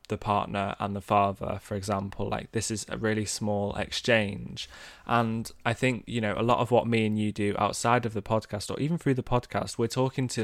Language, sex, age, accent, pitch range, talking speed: English, male, 20-39, British, 100-120 Hz, 225 wpm